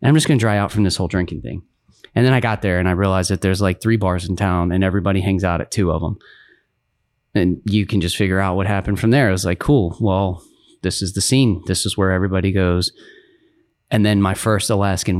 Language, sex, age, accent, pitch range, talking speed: English, male, 30-49, American, 90-105 Hz, 245 wpm